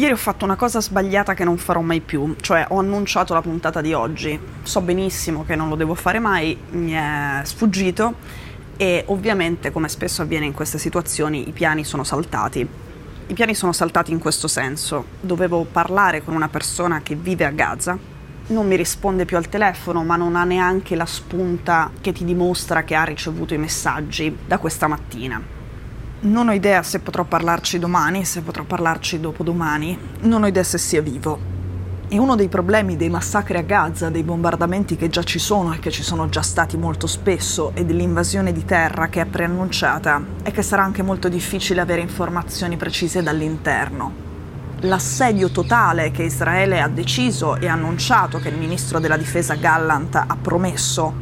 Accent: native